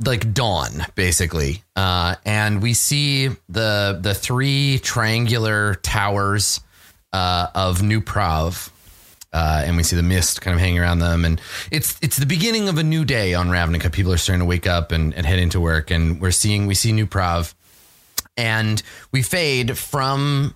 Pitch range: 95-145 Hz